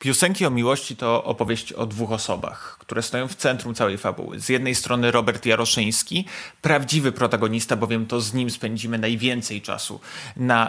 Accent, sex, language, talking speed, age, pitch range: native, male, Polish, 165 wpm, 30-49, 120-145 Hz